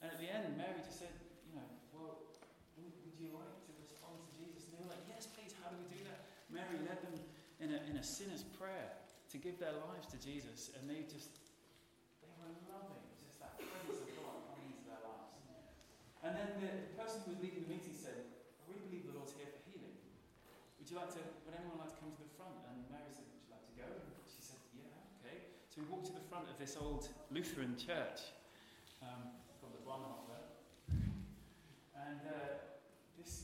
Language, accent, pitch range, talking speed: English, British, 150-190 Hz, 210 wpm